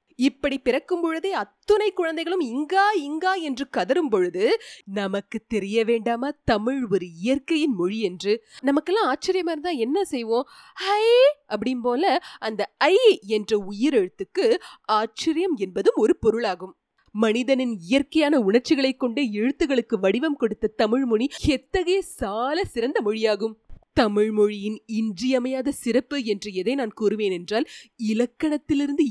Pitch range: 220-340 Hz